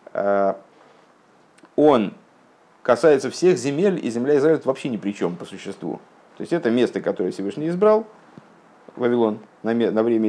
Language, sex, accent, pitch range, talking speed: Russian, male, native, 105-145 Hz, 135 wpm